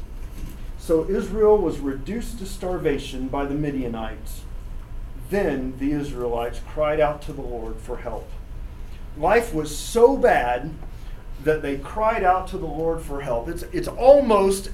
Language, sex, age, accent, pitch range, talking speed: English, male, 40-59, American, 130-185 Hz, 145 wpm